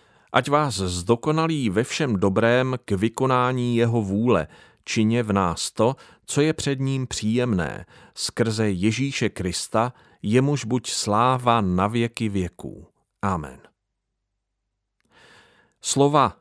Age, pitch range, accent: 40-59, 100-130 Hz, native